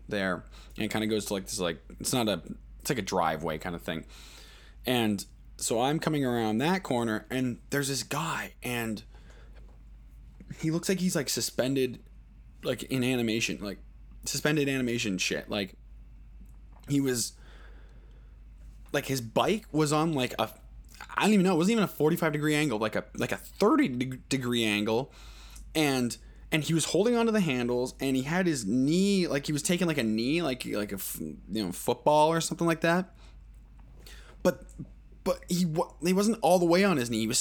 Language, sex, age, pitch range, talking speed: English, male, 20-39, 105-175 Hz, 185 wpm